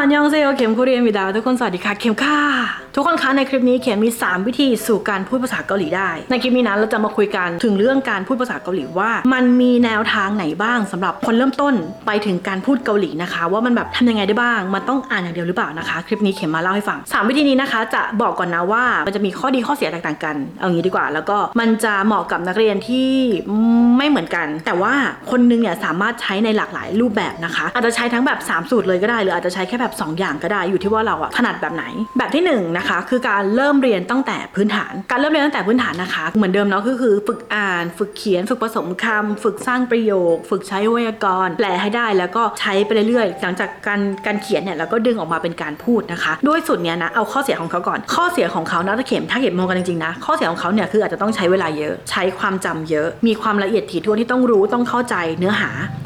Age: 20-39